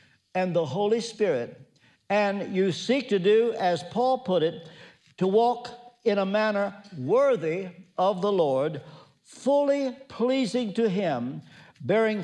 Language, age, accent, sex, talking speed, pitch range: English, 60-79, American, male, 130 wpm, 170-230 Hz